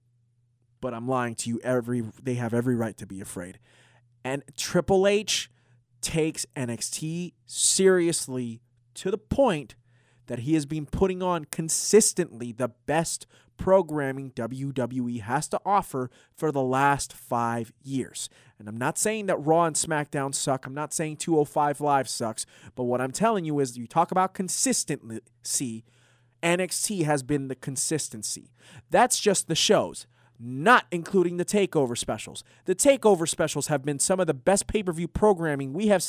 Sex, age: male, 30-49